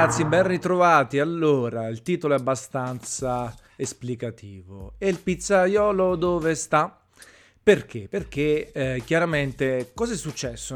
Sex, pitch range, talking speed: male, 120-145 Hz, 110 wpm